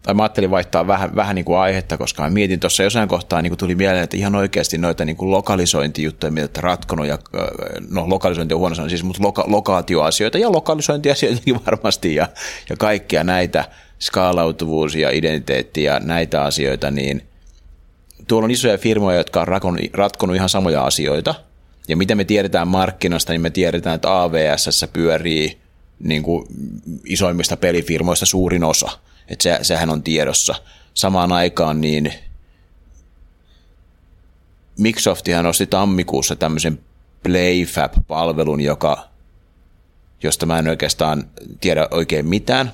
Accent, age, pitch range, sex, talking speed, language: native, 30-49, 80-95 Hz, male, 135 wpm, Finnish